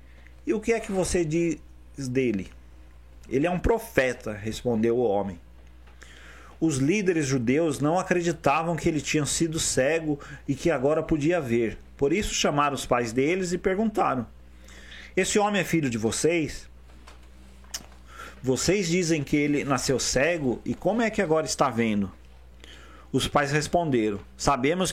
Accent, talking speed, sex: Brazilian, 145 wpm, male